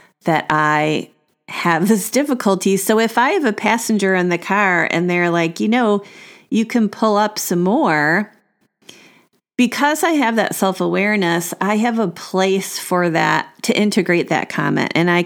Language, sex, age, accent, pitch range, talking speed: English, female, 40-59, American, 175-225 Hz, 165 wpm